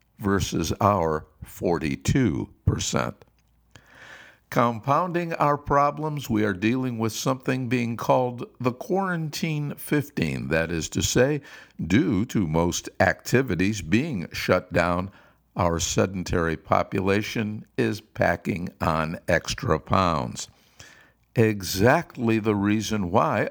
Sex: male